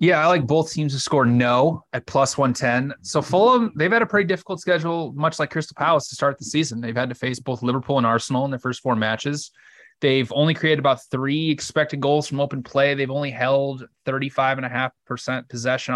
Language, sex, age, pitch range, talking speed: English, male, 20-39, 130-150 Hz, 205 wpm